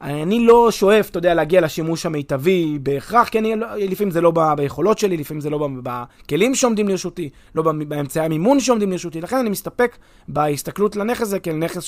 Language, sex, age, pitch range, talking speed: Hebrew, male, 30-49, 150-215 Hz, 180 wpm